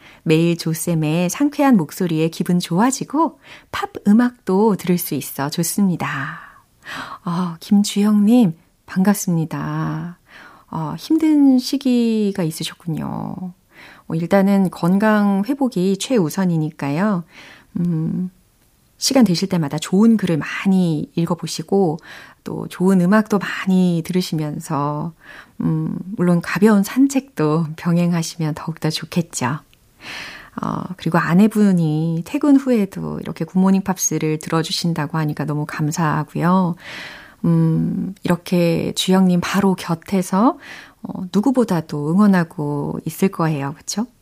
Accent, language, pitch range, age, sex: native, Korean, 160-200 Hz, 40-59, female